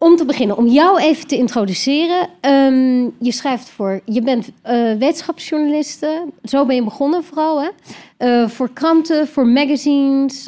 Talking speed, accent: 155 wpm, Dutch